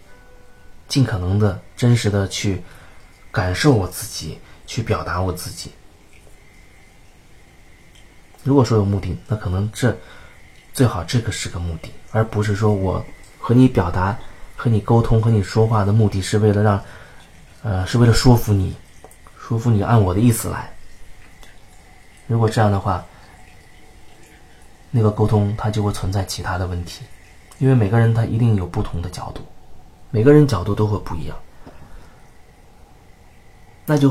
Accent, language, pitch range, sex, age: native, Chinese, 95-120 Hz, male, 30-49